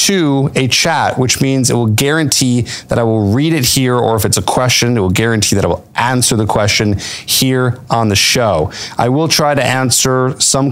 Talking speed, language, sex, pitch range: 215 wpm, English, male, 105-135 Hz